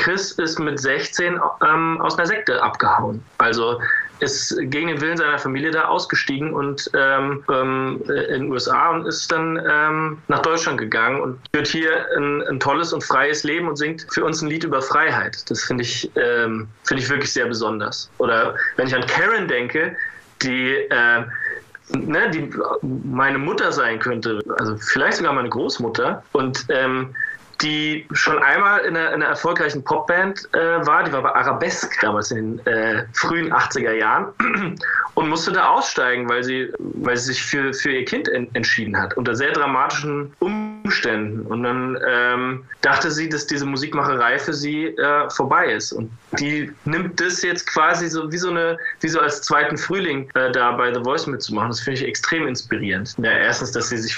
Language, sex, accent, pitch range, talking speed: German, male, German, 130-165 Hz, 180 wpm